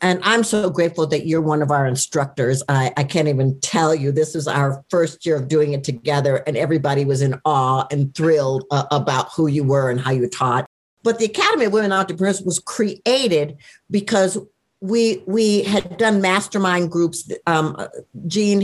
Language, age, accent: English, 60-79, American